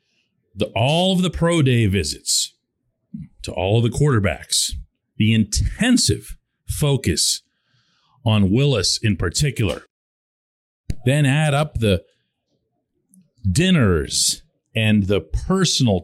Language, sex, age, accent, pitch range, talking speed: English, male, 40-59, American, 100-170 Hz, 100 wpm